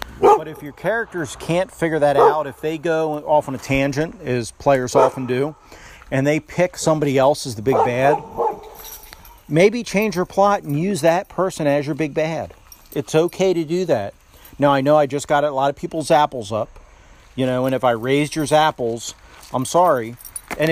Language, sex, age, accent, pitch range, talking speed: English, male, 40-59, American, 125-155 Hz, 195 wpm